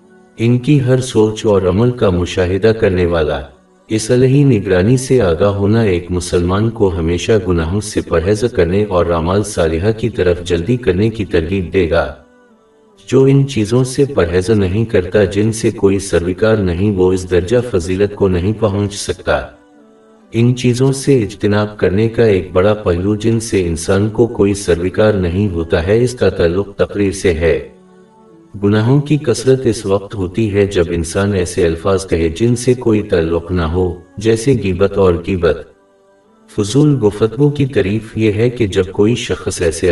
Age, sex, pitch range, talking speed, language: 60-79, male, 90-115 Hz, 165 wpm, Urdu